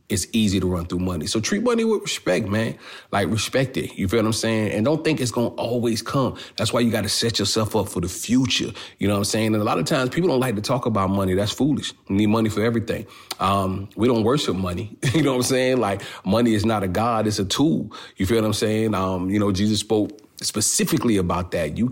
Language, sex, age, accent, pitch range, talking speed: English, male, 40-59, American, 95-115 Hz, 265 wpm